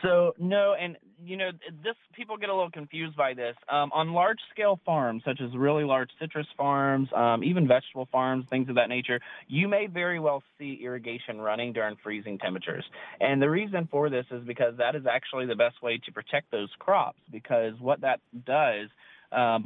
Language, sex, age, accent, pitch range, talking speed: English, male, 20-39, American, 115-150 Hz, 190 wpm